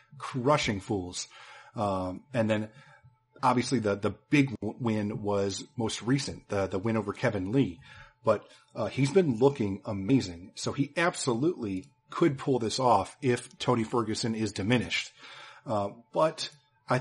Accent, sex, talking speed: American, male, 140 wpm